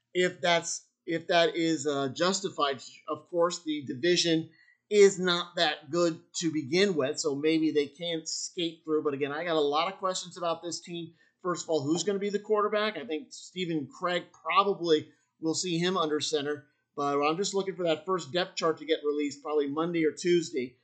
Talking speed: 200 wpm